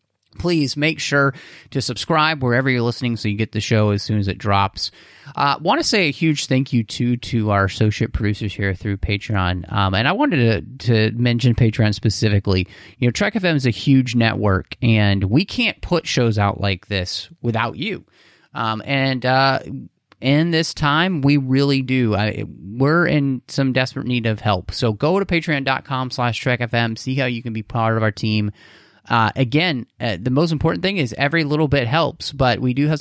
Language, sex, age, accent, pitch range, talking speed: English, male, 30-49, American, 110-140 Hz, 200 wpm